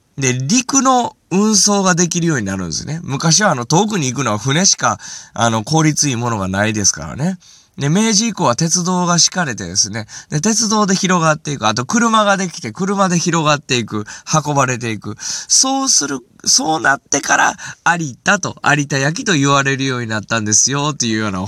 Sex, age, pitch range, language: male, 20-39, 115-170 Hz, Japanese